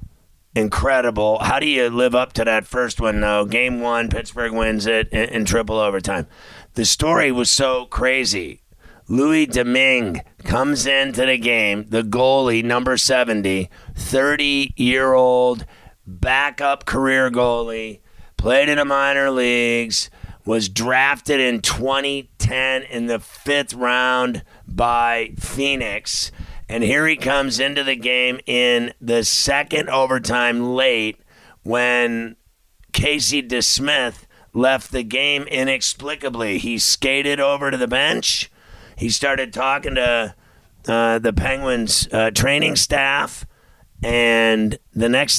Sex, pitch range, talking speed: male, 115-135 Hz, 125 wpm